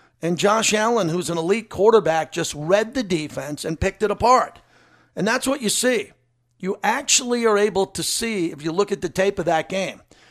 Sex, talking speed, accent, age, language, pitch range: male, 205 wpm, American, 50-69, English, 170-210 Hz